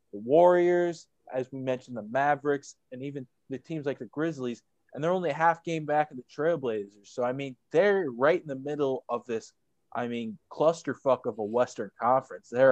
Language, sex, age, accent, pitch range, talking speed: English, male, 20-39, American, 115-150 Hz, 200 wpm